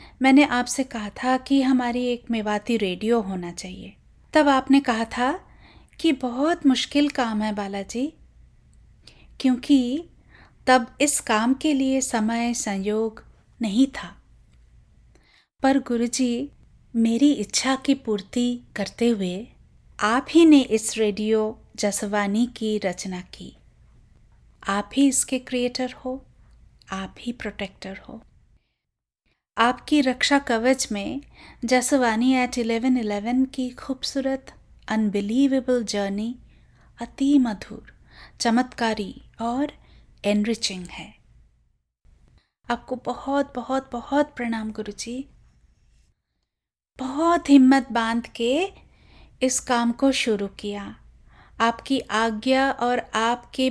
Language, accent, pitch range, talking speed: English, Indian, 220-265 Hz, 105 wpm